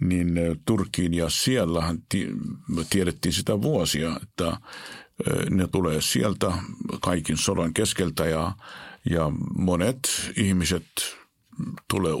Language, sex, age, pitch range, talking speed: Finnish, male, 50-69, 80-95 Hz, 95 wpm